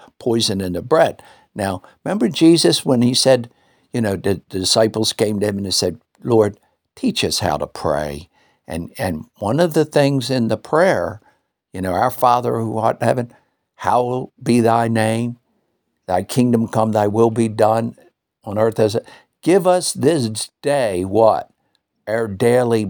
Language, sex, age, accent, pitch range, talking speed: English, male, 60-79, American, 110-135 Hz, 170 wpm